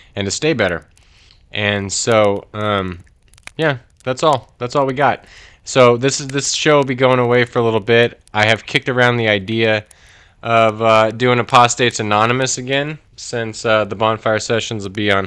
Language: English